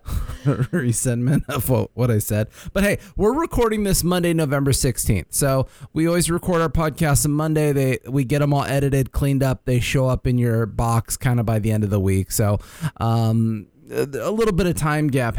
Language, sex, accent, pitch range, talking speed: English, male, American, 115-165 Hz, 200 wpm